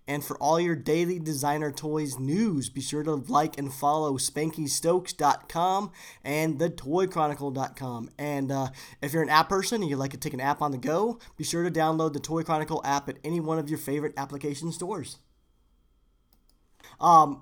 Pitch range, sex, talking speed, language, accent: 140-160 Hz, male, 180 wpm, English, American